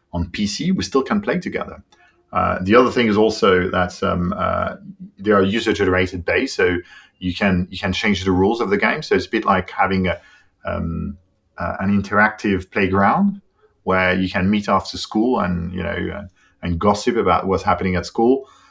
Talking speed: 190 wpm